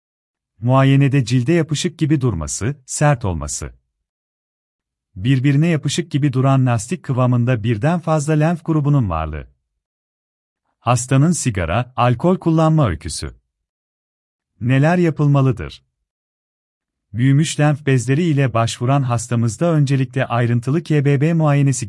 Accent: native